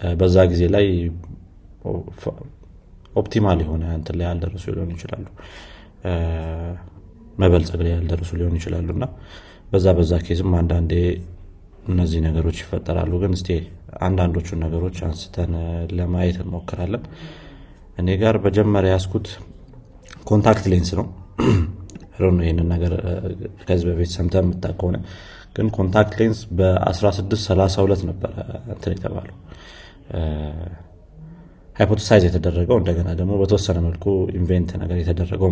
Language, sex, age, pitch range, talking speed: Amharic, male, 30-49, 85-95 Hz, 95 wpm